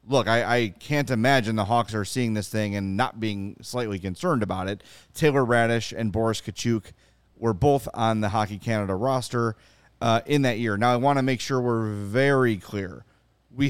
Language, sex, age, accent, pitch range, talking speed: English, male, 30-49, American, 100-125 Hz, 195 wpm